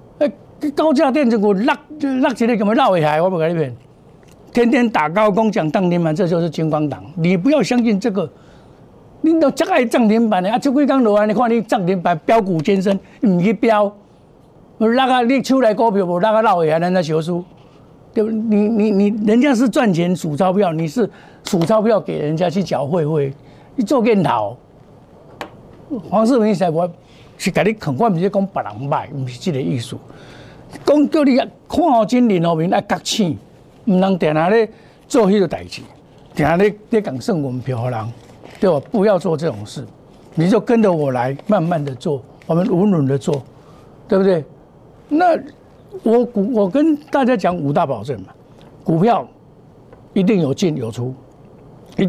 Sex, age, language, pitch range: male, 60-79, Chinese, 150-225 Hz